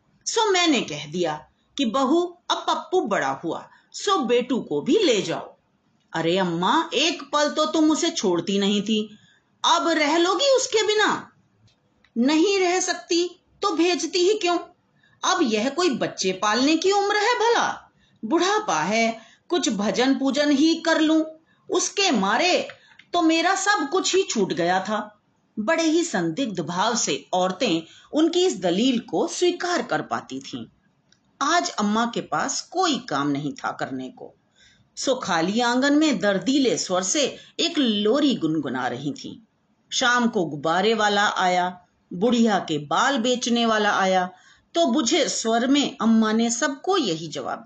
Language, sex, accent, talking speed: Hindi, female, native, 150 wpm